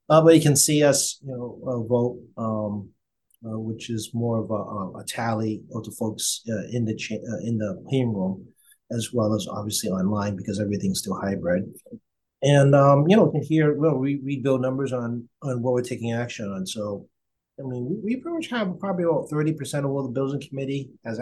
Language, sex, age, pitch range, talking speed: English, male, 30-49, 105-140 Hz, 230 wpm